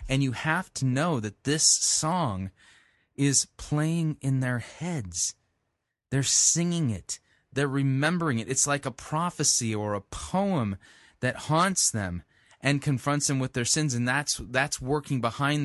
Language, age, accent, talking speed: English, 20-39, American, 155 wpm